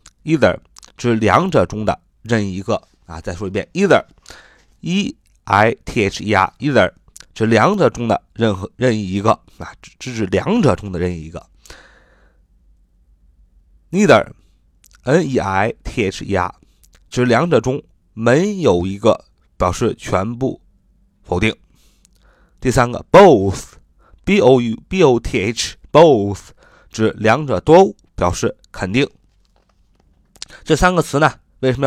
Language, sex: Chinese, male